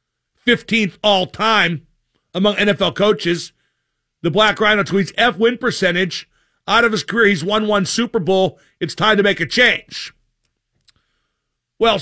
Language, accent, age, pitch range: English, American, 50-69, 185-225 Hz